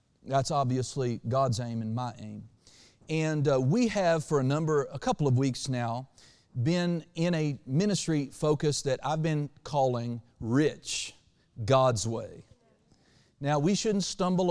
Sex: male